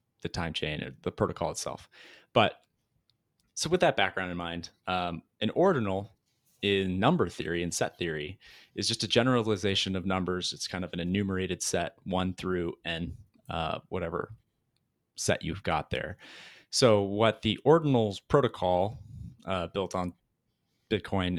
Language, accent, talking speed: English, American, 145 wpm